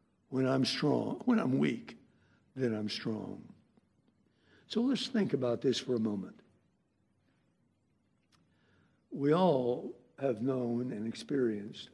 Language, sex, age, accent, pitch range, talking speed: English, male, 60-79, American, 120-155 Hz, 115 wpm